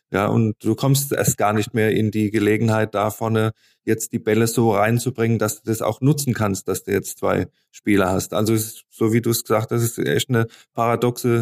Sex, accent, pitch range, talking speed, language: male, German, 110-125 Hz, 230 wpm, German